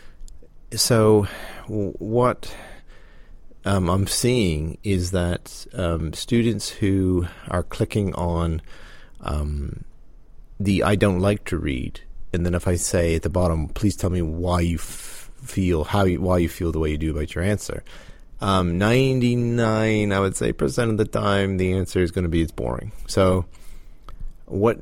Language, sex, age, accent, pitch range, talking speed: English, male, 30-49, American, 85-100 Hz, 160 wpm